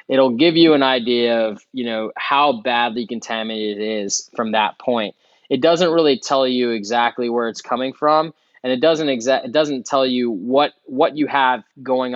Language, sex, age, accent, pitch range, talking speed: English, male, 20-39, American, 120-150 Hz, 190 wpm